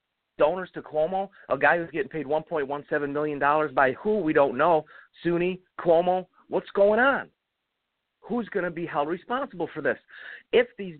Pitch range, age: 145-185 Hz, 40-59